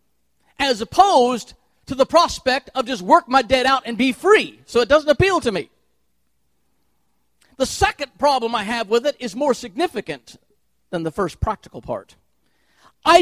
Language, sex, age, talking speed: English, male, 50-69, 165 wpm